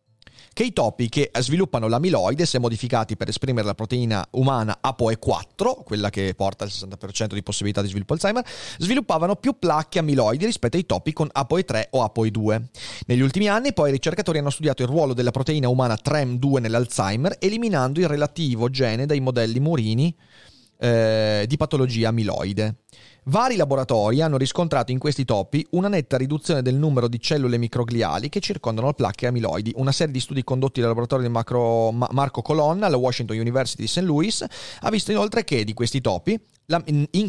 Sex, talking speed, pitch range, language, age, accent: male, 170 wpm, 115-155 Hz, Italian, 30-49, native